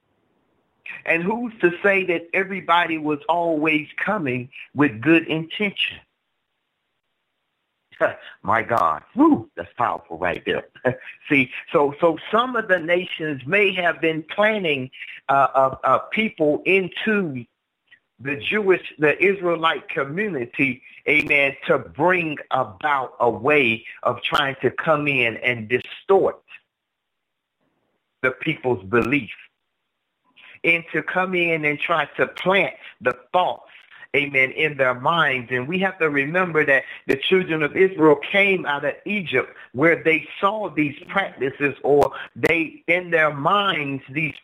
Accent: American